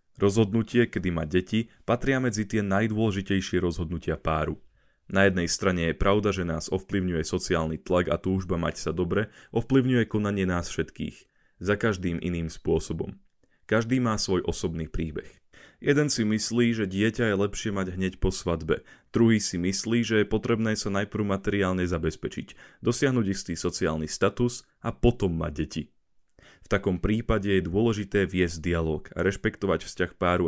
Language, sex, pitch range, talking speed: Slovak, male, 90-110 Hz, 155 wpm